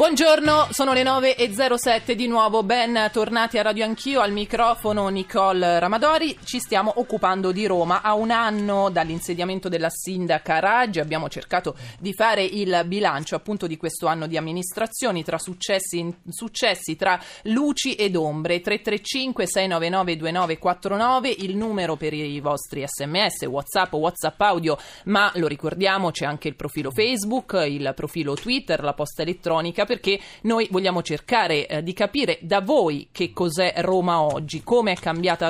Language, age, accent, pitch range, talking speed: Italian, 30-49, native, 160-215 Hz, 145 wpm